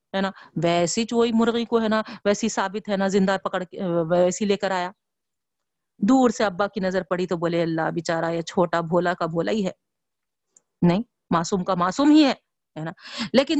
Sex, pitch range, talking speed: female, 195-260 Hz, 180 wpm